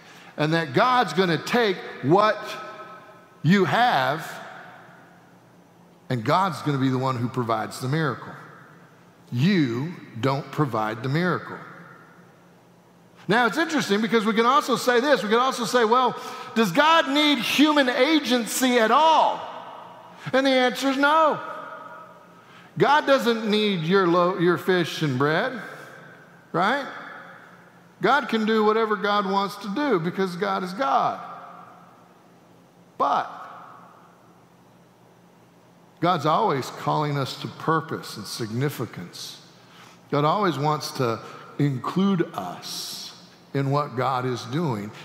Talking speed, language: 120 wpm, English